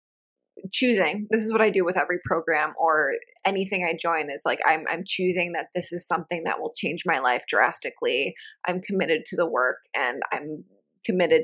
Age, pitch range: 20-39, 180-235 Hz